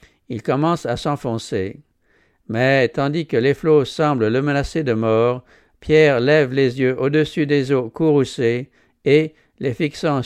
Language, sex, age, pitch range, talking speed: English, male, 60-79, 120-150 Hz, 145 wpm